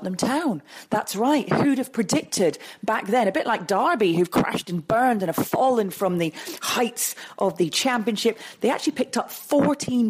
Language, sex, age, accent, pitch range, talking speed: English, female, 40-59, British, 190-255 Hz, 185 wpm